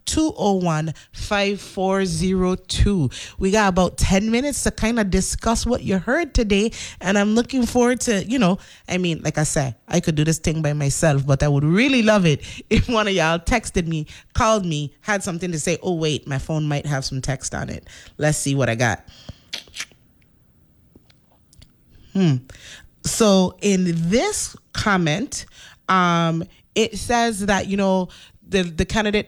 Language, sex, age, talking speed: English, female, 20-39, 175 wpm